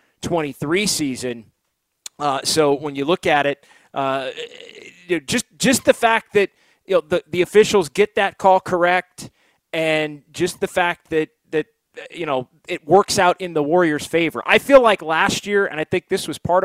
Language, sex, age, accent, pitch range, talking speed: English, male, 30-49, American, 145-185 Hz, 180 wpm